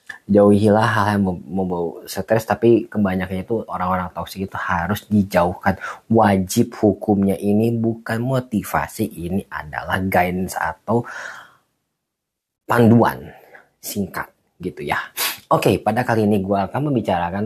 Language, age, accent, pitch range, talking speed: Indonesian, 20-39, native, 95-115 Hz, 125 wpm